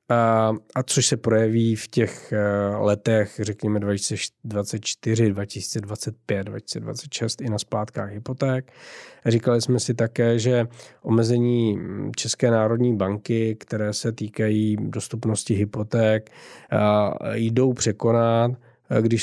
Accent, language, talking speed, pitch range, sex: native, Czech, 100 wpm, 105-115 Hz, male